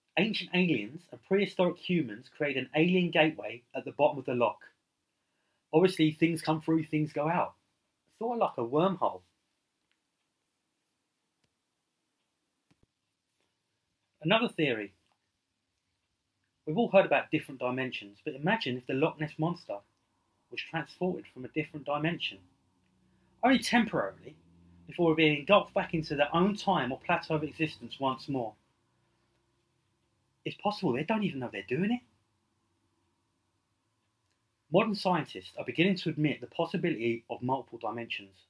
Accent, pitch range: British, 115-175 Hz